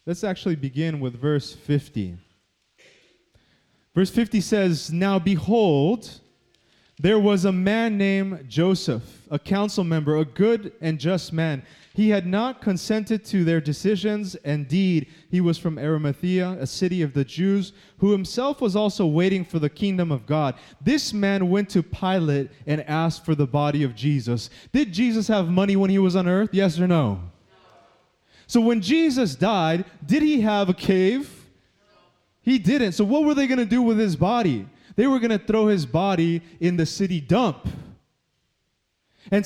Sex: male